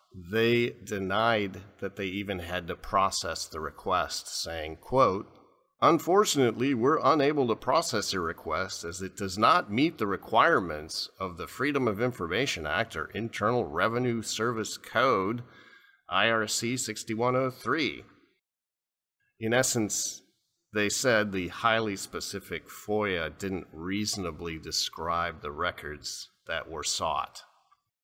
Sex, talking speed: male, 120 wpm